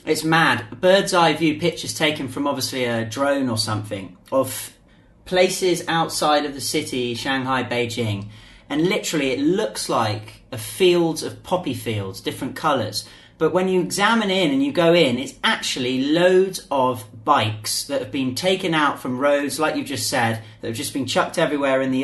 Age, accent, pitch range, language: 30-49, British, 130-185 Hz, English